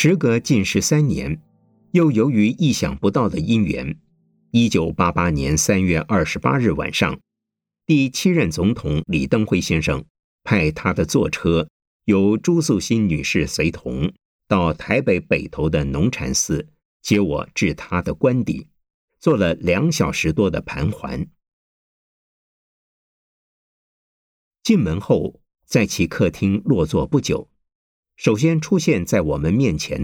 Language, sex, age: Chinese, male, 50-69